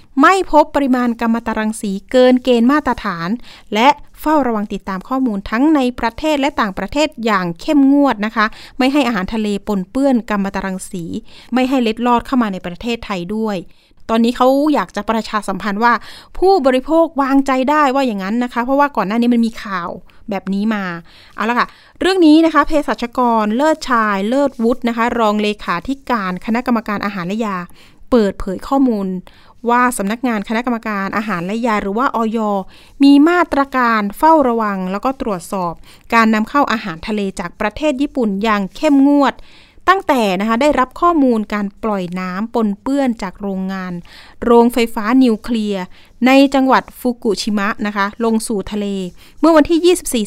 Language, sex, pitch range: Thai, female, 205-270 Hz